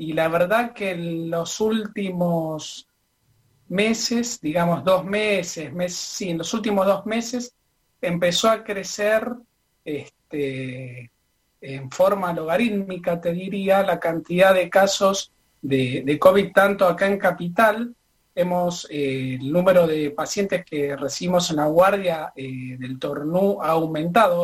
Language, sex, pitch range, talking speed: Spanish, male, 155-195 Hz, 130 wpm